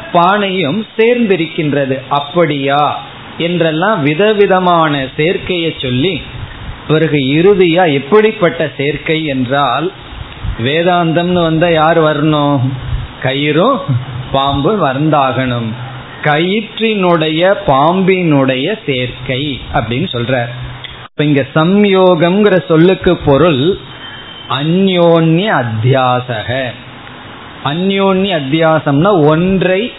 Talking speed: 35 wpm